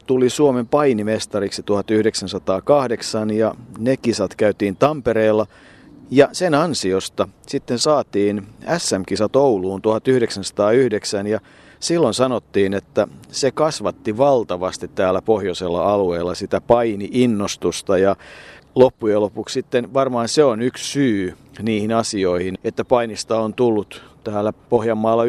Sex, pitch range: male, 105-125 Hz